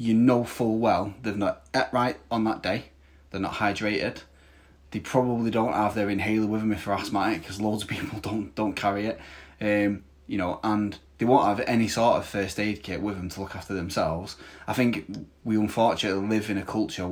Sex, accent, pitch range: male, British, 95-110 Hz